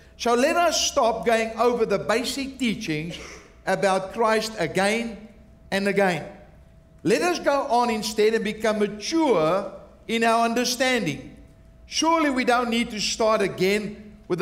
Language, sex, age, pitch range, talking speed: English, male, 50-69, 205-250 Hz, 135 wpm